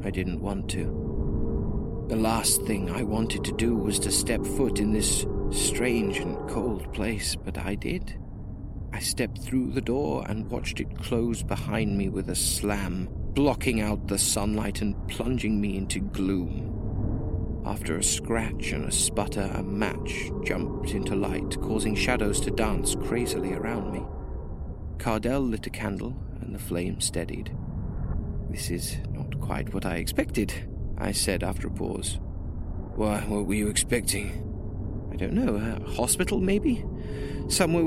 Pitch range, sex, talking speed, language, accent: 90-110 Hz, male, 155 wpm, English, British